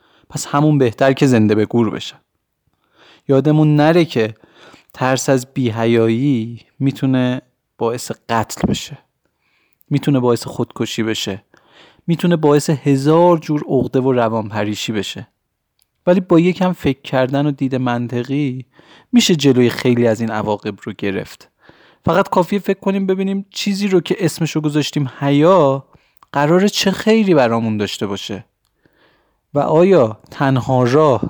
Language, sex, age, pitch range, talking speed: Persian, male, 30-49, 115-150 Hz, 130 wpm